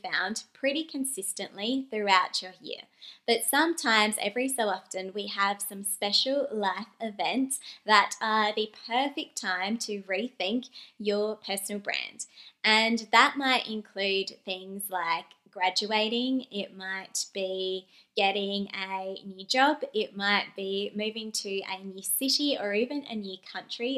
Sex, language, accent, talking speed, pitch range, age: female, English, Australian, 135 wpm, 195-240 Hz, 20-39